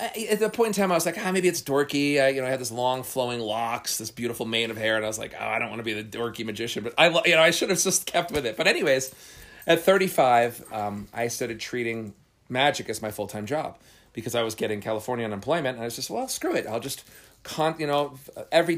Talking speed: 270 wpm